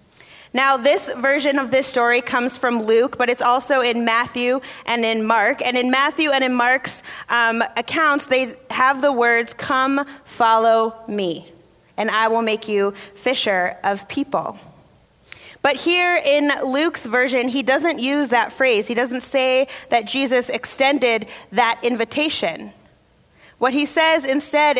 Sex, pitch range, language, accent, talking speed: female, 230-275 Hz, English, American, 150 wpm